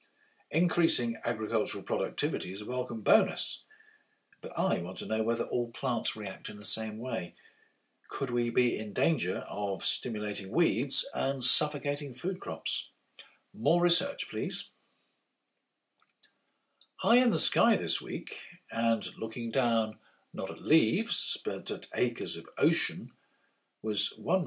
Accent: British